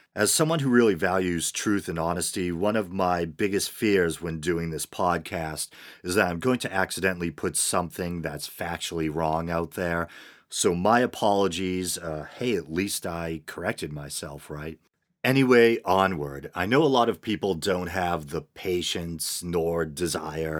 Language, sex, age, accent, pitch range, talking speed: English, male, 40-59, American, 80-95 Hz, 160 wpm